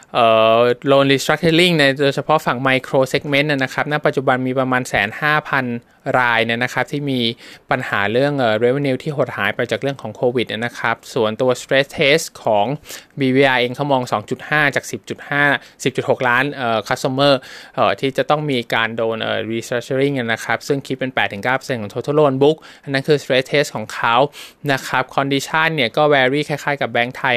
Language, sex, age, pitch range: Thai, male, 20-39, 120-145 Hz